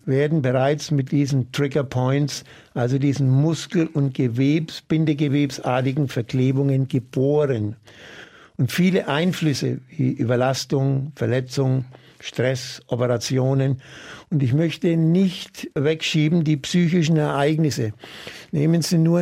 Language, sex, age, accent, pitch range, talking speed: German, male, 60-79, German, 135-160 Hz, 105 wpm